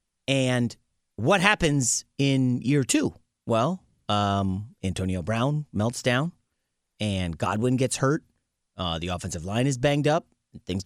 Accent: American